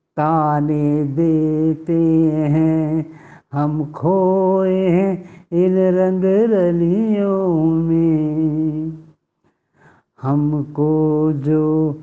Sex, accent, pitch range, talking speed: male, Indian, 155-190 Hz, 55 wpm